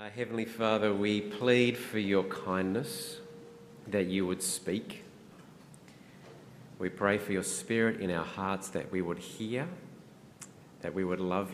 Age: 40-59